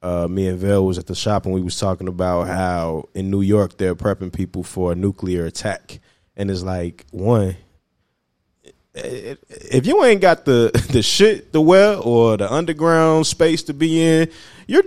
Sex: male